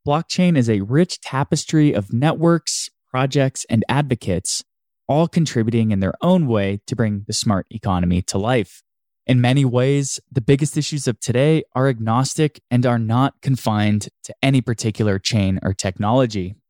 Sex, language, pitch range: male, English, 105-145 Hz